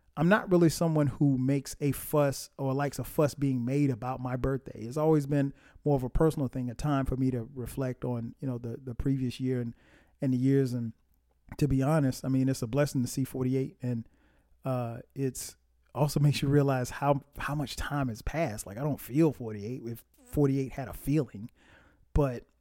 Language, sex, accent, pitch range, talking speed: English, male, American, 125-145 Hz, 205 wpm